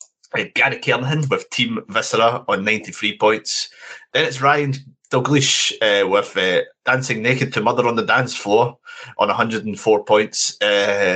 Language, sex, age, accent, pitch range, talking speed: English, male, 30-49, British, 105-155 Hz, 145 wpm